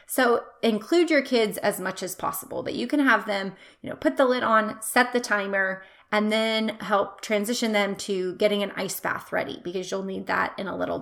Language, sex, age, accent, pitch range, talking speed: English, female, 30-49, American, 195-240 Hz, 220 wpm